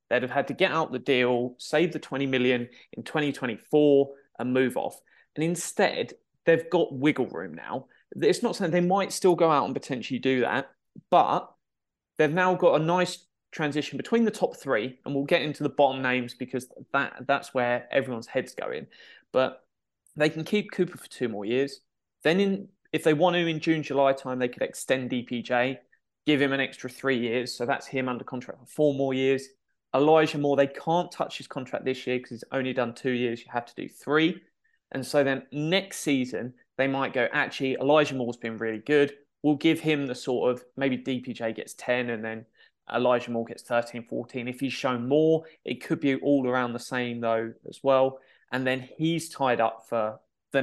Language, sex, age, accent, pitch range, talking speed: English, male, 20-39, British, 125-155 Hz, 205 wpm